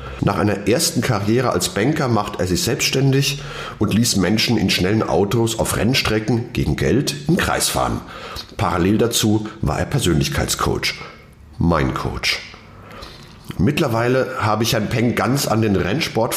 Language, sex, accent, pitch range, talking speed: German, male, German, 95-120 Hz, 145 wpm